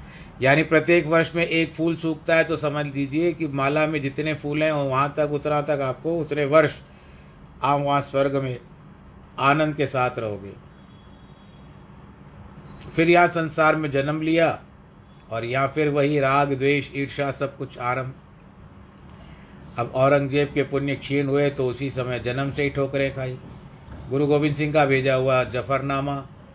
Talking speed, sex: 155 wpm, male